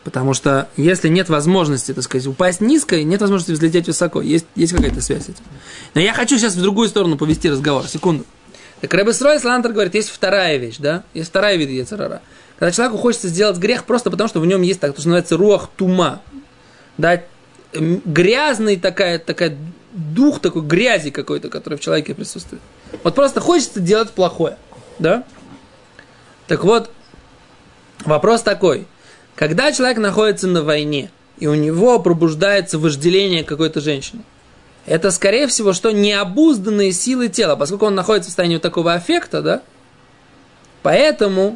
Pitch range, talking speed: 165-225 Hz, 155 wpm